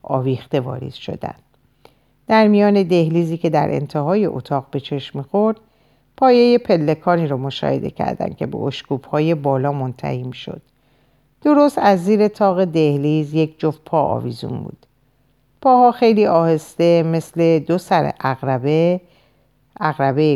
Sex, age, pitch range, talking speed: female, 50-69, 135-180 Hz, 125 wpm